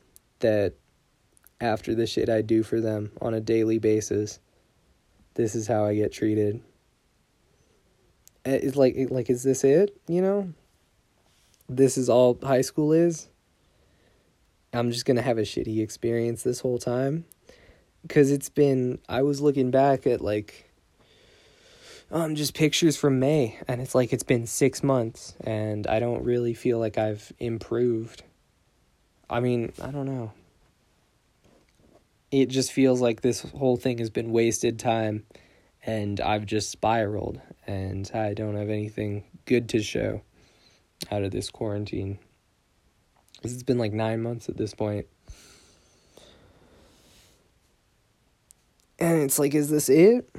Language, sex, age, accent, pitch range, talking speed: English, male, 20-39, American, 110-135 Hz, 140 wpm